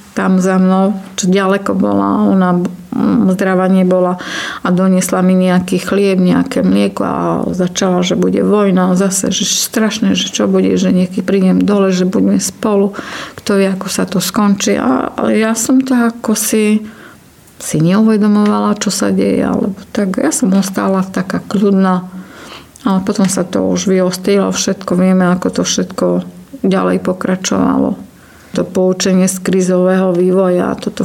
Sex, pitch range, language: female, 185-205 Hz, Slovak